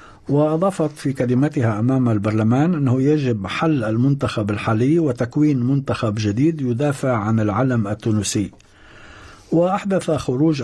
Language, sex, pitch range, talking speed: Arabic, male, 110-155 Hz, 105 wpm